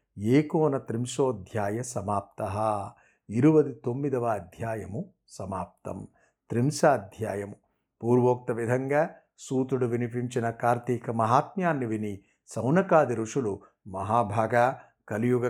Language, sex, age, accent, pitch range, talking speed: Telugu, male, 50-69, native, 115-155 Hz, 75 wpm